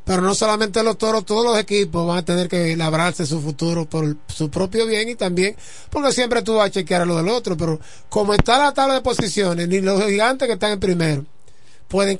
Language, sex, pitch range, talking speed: Spanish, male, 160-215 Hz, 220 wpm